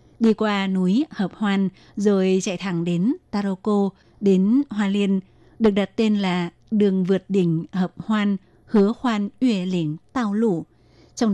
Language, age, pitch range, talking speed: Vietnamese, 20-39, 185-215 Hz, 155 wpm